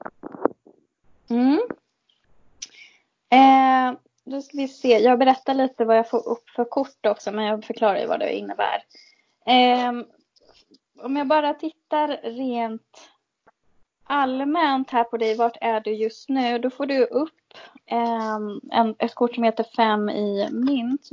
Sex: female